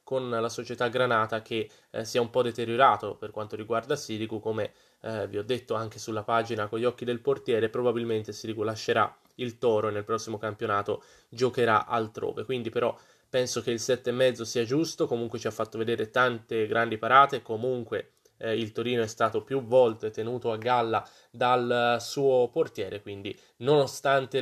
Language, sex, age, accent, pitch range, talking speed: Italian, male, 20-39, native, 110-125 Hz, 180 wpm